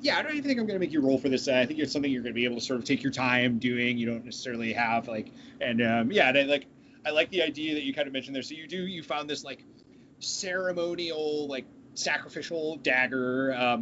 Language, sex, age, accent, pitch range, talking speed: English, male, 30-49, American, 125-165 Hz, 275 wpm